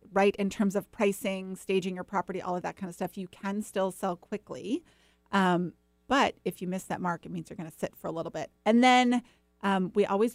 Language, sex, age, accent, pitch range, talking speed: English, female, 30-49, American, 180-215 Hz, 230 wpm